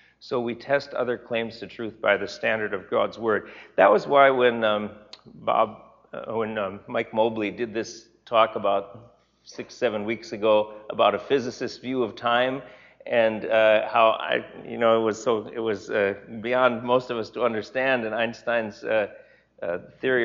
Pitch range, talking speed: 110-130 Hz, 180 wpm